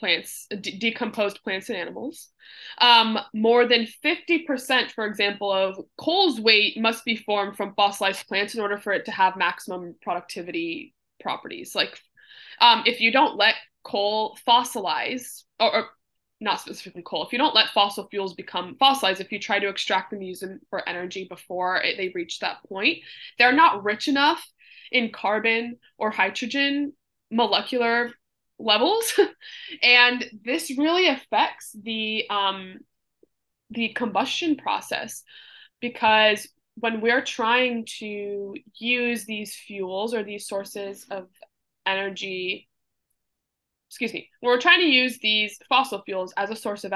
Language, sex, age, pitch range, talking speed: English, female, 20-39, 200-255 Hz, 145 wpm